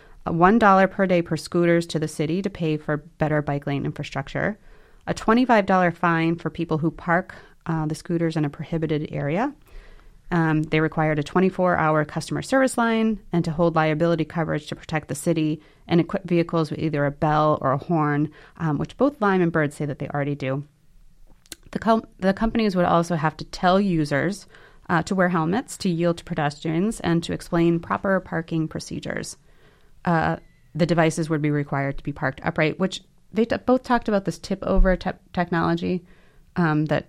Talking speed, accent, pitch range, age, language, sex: 185 wpm, American, 155-180 Hz, 30-49, English, female